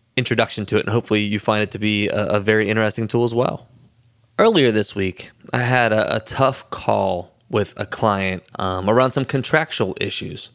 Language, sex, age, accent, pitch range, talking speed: English, male, 20-39, American, 105-130 Hz, 195 wpm